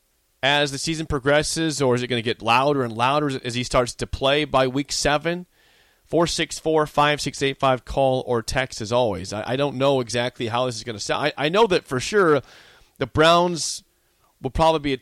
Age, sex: 30-49, male